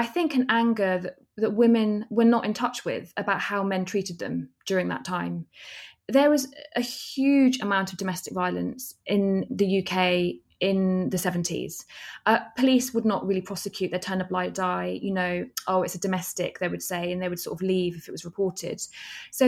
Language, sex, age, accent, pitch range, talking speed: English, female, 20-39, British, 180-230 Hz, 200 wpm